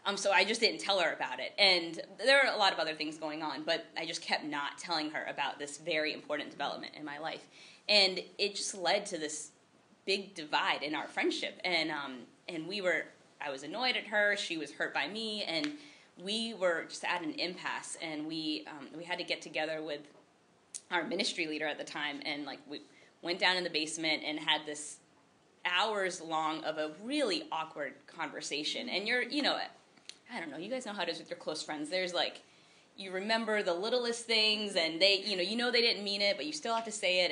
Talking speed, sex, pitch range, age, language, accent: 225 wpm, female, 155-215 Hz, 20-39, English, American